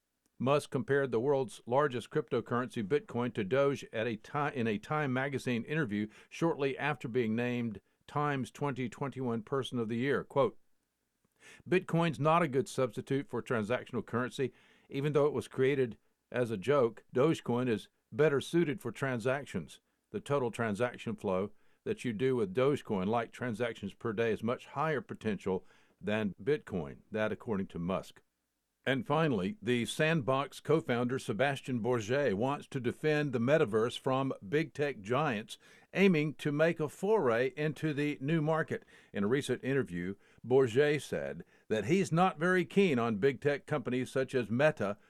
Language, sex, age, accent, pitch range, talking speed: English, male, 50-69, American, 120-150 Hz, 150 wpm